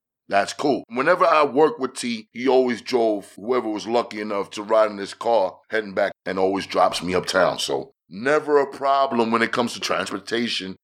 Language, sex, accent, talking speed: English, male, American, 195 wpm